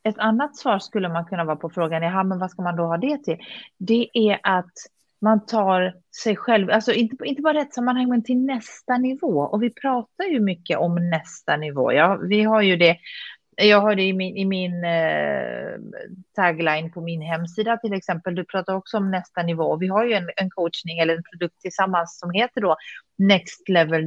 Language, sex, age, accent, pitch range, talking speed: Swedish, female, 30-49, native, 175-220 Hz, 205 wpm